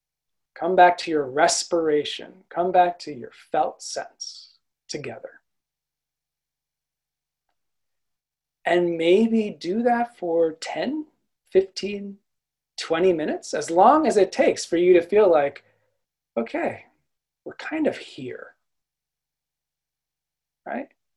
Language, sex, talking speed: English, male, 105 wpm